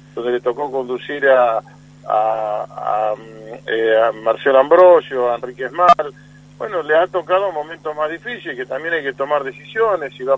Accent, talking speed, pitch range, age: Argentinian, 175 wpm, 125-165 Hz, 50-69